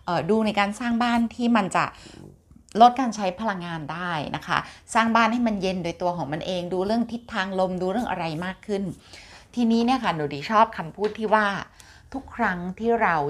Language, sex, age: Thai, female, 30-49